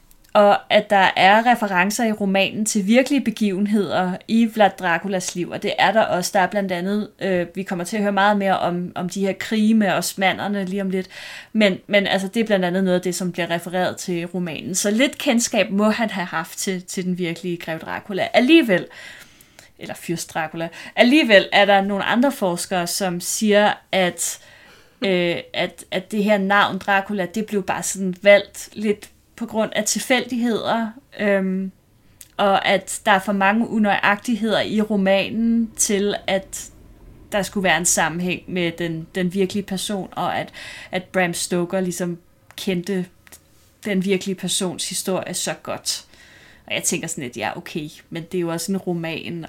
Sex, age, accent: female, 30-49, native